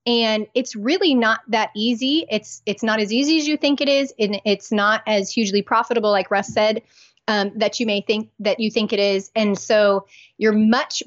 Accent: American